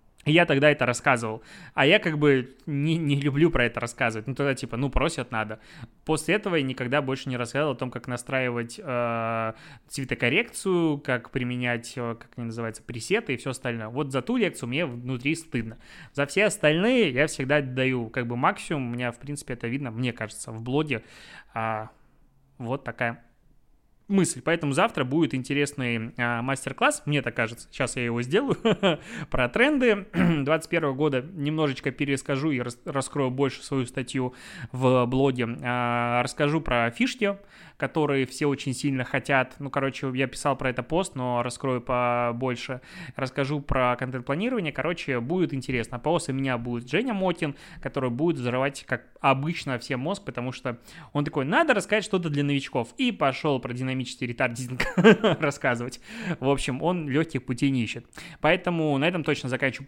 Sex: male